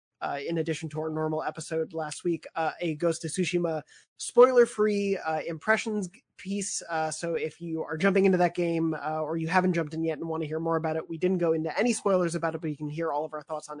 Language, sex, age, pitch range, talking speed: English, male, 20-39, 160-185 Hz, 250 wpm